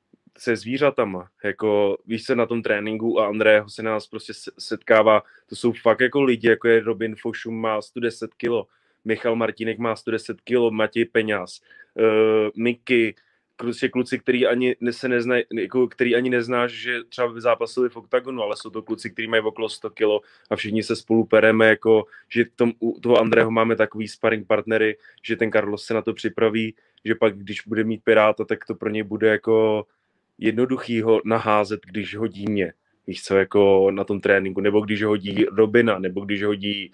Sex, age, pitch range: male, 20-39, 105-115 Hz